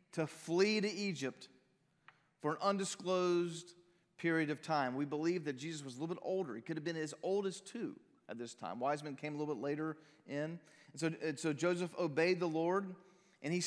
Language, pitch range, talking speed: English, 150-190 Hz, 205 wpm